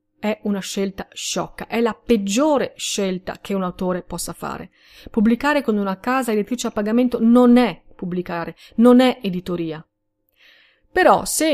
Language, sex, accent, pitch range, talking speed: Italian, female, native, 195-255 Hz, 145 wpm